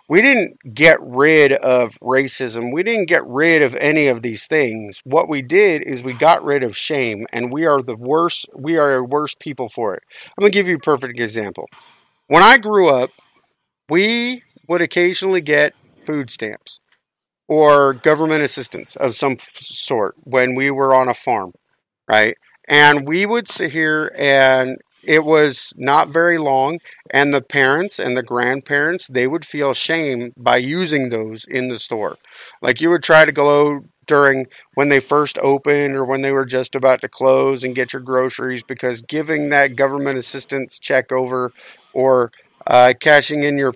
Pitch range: 130-155 Hz